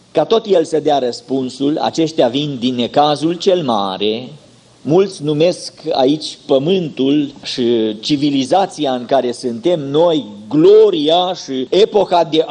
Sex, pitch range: male, 140-190 Hz